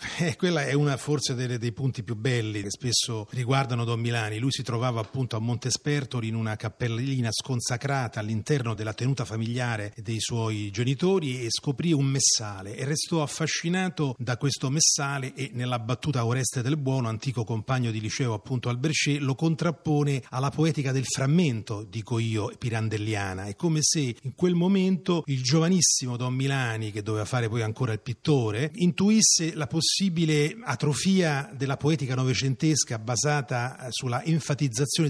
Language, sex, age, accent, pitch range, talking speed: Italian, male, 30-49, native, 115-150 Hz, 155 wpm